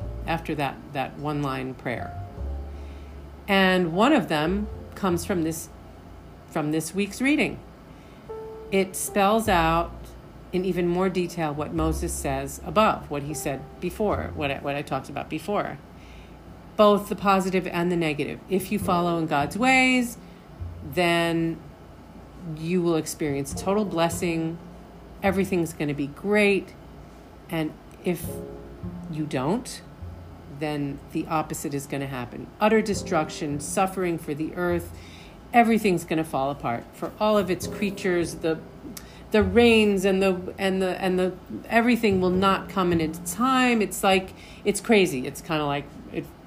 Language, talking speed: English, 145 wpm